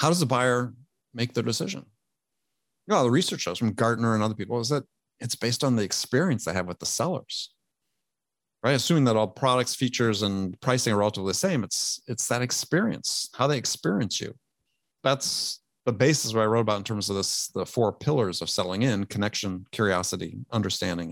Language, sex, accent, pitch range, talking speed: English, male, American, 105-130 Hz, 200 wpm